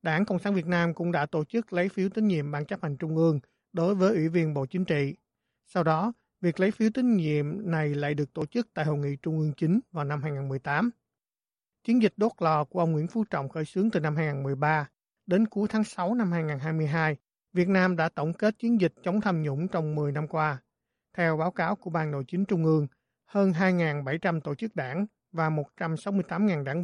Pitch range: 150-185 Hz